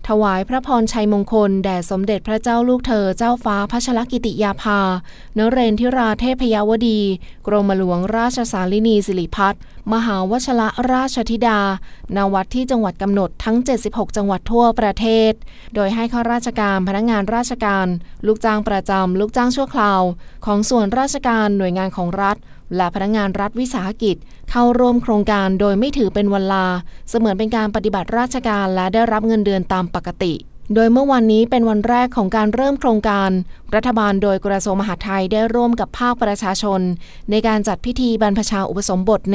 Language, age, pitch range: Thai, 20-39, 195-230 Hz